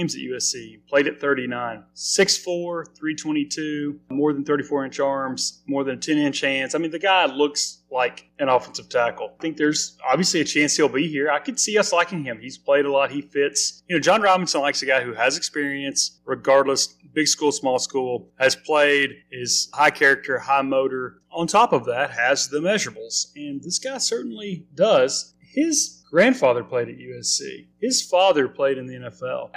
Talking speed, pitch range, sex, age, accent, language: 185 wpm, 135-165 Hz, male, 30-49, American, English